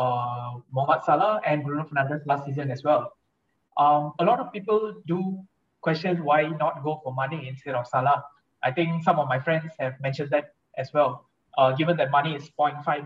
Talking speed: 195 wpm